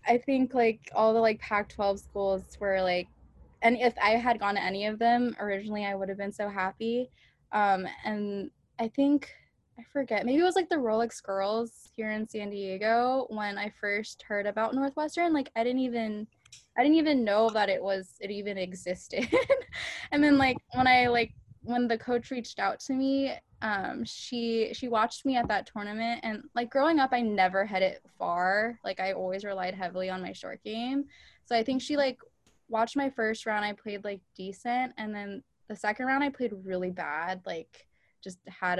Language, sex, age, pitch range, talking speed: English, female, 10-29, 195-245 Hz, 195 wpm